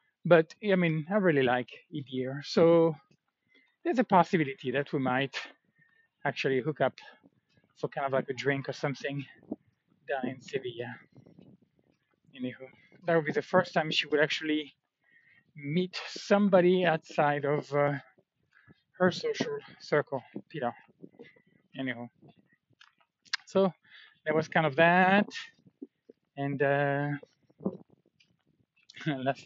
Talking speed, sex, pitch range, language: 120 wpm, male, 135-175 Hz, English